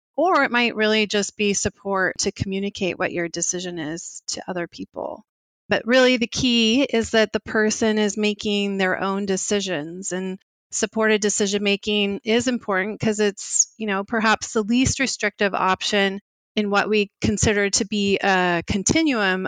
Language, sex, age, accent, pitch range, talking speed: English, female, 30-49, American, 185-220 Hz, 160 wpm